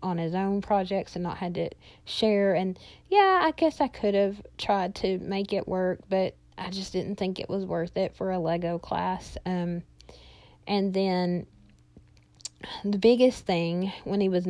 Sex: female